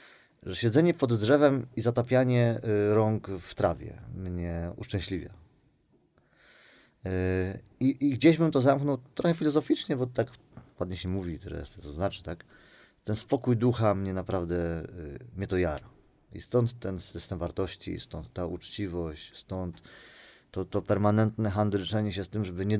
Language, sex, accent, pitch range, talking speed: Polish, male, native, 90-120 Hz, 140 wpm